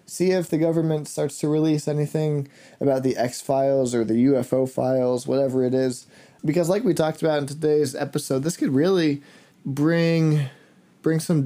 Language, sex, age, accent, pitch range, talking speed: English, male, 20-39, American, 120-150 Hz, 170 wpm